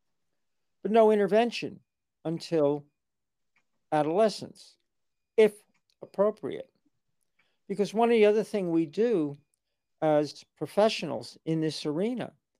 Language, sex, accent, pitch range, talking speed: English, male, American, 160-210 Hz, 95 wpm